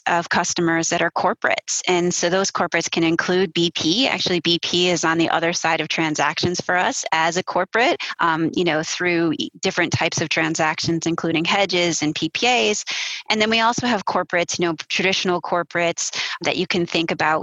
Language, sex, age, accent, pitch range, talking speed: English, female, 20-39, American, 165-185 Hz, 185 wpm